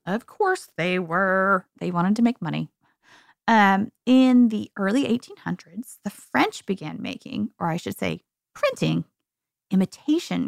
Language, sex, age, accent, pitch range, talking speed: English, female, 20-39, American, 185-265 Hz, 135 wpm